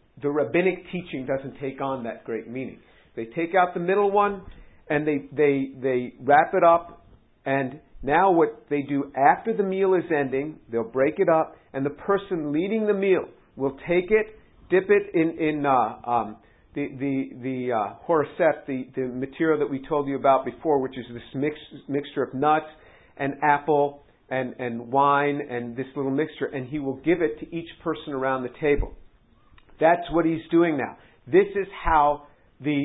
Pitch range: 135-165 Hz